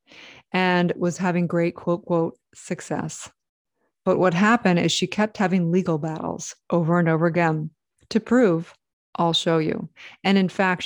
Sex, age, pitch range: female, 30-49, 165-185 Hz